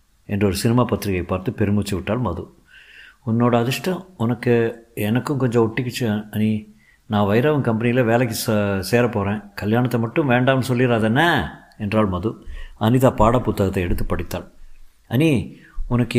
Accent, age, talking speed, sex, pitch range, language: native, 50-69, 130 wpm, male, 105-145 Hz, Tamil